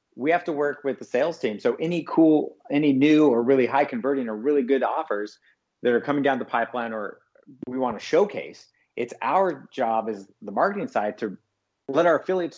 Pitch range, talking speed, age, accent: 110-140 Hz, 200 wpm, 40-59, American